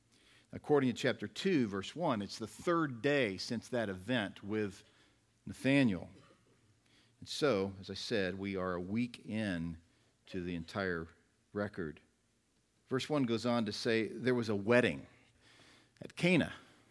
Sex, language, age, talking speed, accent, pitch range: male, English, 50-69, 145 wpm, American, 90-115 Hz